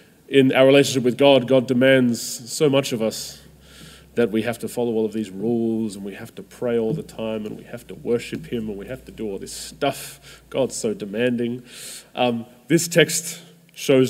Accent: Australian